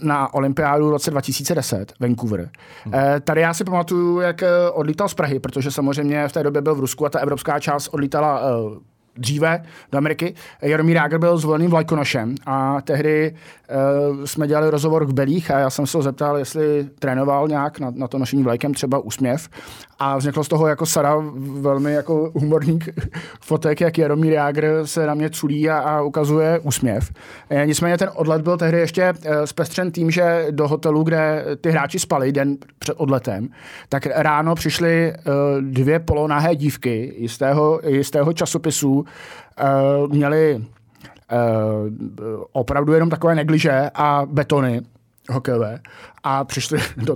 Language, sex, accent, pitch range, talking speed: Czech, male, native, 140-160 Hz, 155 wpm